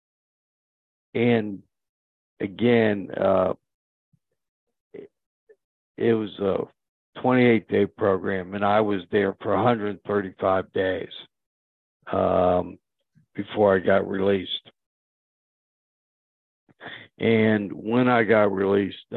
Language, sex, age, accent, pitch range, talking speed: English, male, 60-79, American, 95-110 Hz, 80 wpm